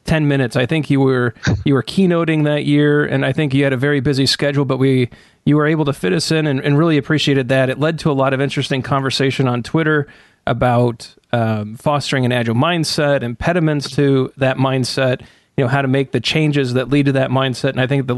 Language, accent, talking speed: English, American, 230 wpm